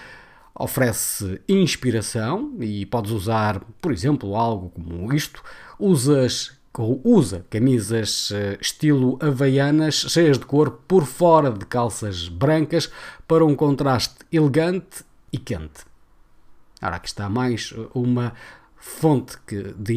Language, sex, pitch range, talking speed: Portuguese, male, 110-150 Hz, 110 wpm